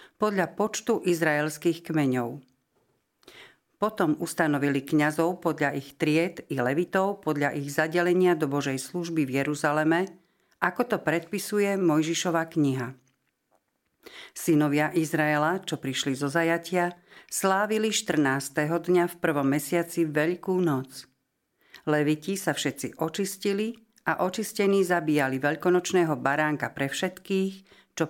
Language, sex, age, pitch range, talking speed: Slovak, female, 50-69, 145-180 Hz, 110 wpm